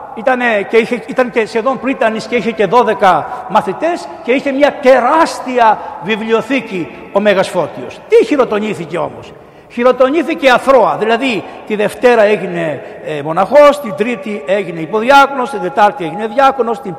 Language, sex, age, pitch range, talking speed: Greek, male, 60-79, 205-280 Hz, 140 wpm